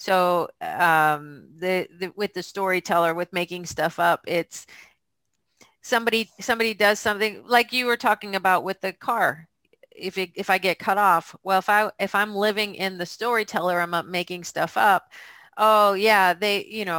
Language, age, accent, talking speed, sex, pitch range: English, 40-59, American, 175 wpm, female, 170-215 Hz